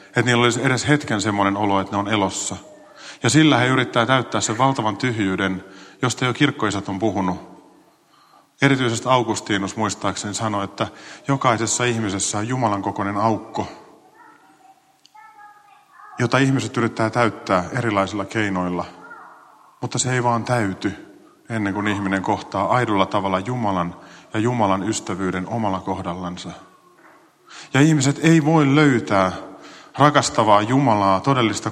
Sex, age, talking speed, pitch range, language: male, 40-59, 125 wpm, 100-125 Hz, Finnish